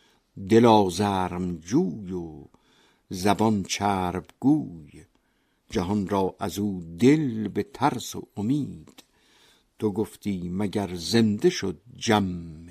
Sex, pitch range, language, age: male, 95-115 Hz, Persian, 60-79